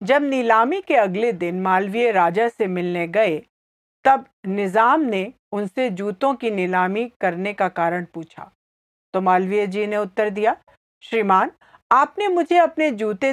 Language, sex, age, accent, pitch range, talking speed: English, female, 50-69, Indian, 205-275 Hz, 145 wpm